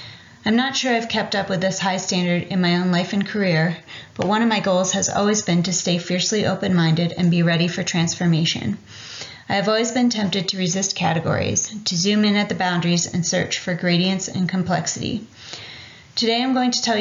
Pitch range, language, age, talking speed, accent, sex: 165-195 Hz, English, 30-49, 205 wpm, American, female